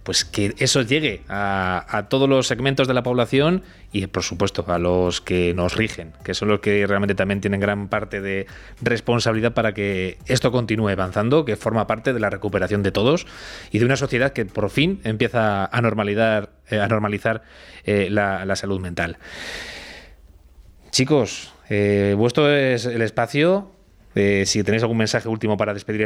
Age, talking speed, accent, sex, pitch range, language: 20-39, 170 wpm, Spanish, male, 95-125 Hz, Spanish